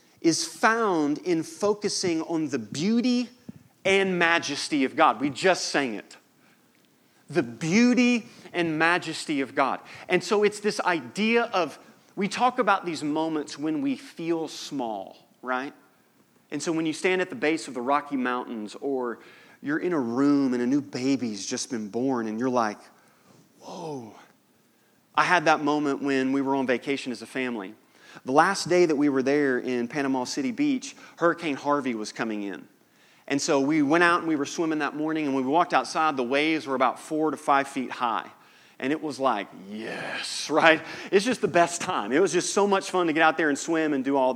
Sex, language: male, English